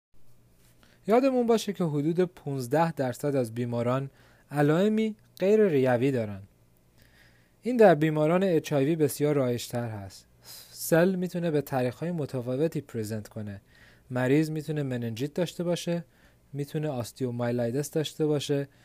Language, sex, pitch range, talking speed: Persian, male, 120-170 Hz, 115 wpm